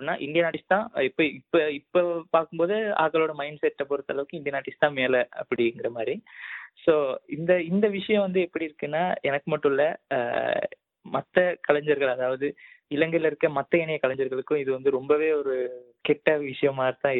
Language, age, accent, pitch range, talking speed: Tamil, 20-39, native, 135-175 Hz, 135 wpm